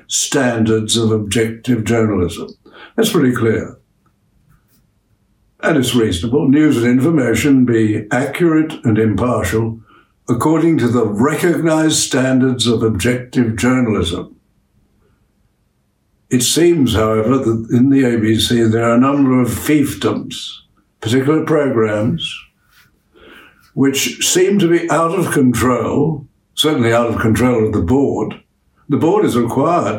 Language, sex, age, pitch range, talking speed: English, male, 60-79, 110-135 Hz, 115 wpm